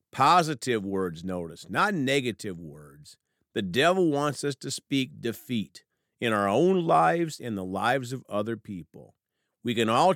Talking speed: 155 wpm